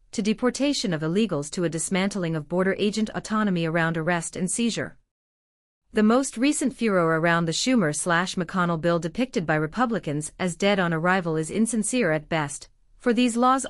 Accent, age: American, 40-59